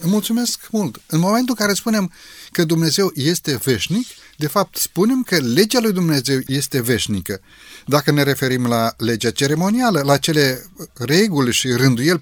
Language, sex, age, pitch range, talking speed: Romanian, male, 30-49, 120-185 Hz, 150 wpm